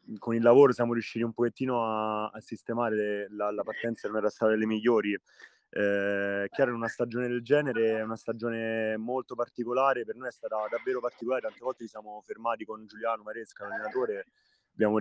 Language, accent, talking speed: Italian, native, 190 wpm